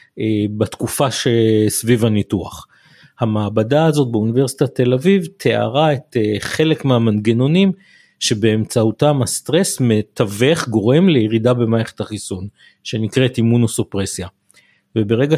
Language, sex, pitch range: Hebrew, male, 110-140 Hz